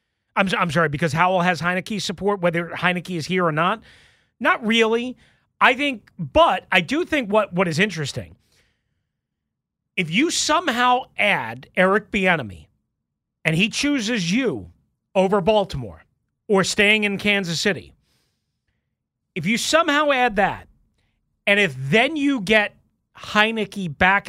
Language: English